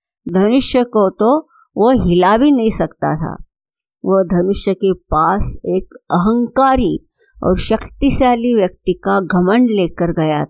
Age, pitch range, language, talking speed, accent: 50-69, 175-230 Hz, Hindi, 125 wpm, native